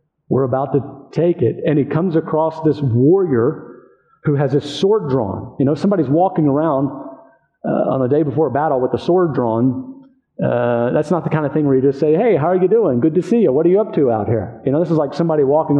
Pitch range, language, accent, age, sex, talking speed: 130-170 Hz, English, American, 50-69, male, 250 wpm